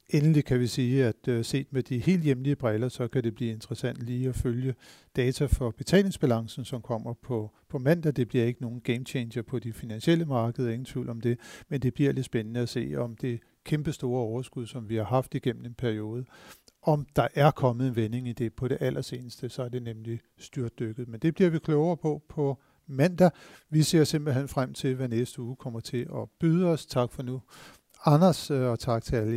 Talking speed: 215 wpm